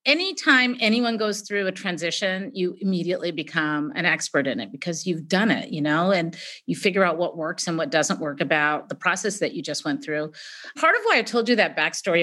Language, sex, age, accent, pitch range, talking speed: English, female, 40-59, American, 180-235 Hz, 220 wpm